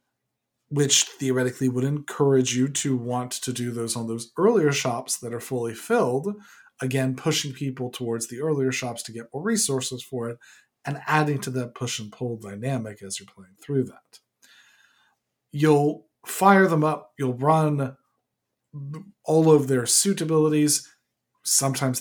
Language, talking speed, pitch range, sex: English, 155 wpm, 125-155 Hz, male